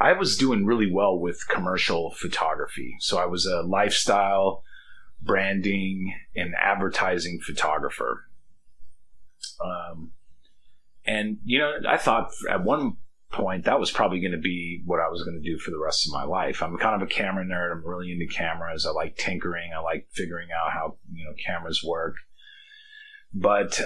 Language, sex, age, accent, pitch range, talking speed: English, male, 30-49, American, 90-110 Hz, 170 wpm